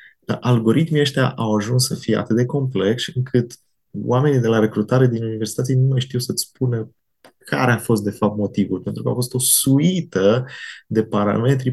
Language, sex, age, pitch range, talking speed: Romanian, male, 30-49, 105-130 Hz, 180 wpm